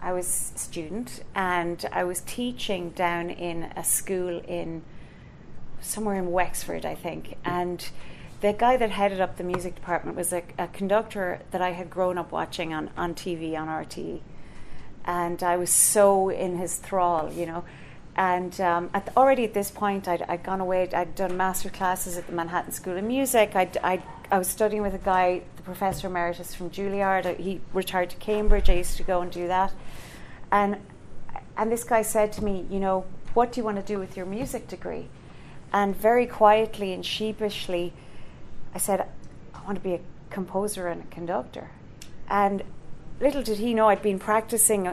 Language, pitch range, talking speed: English, 175-210 Hz, 180 wpm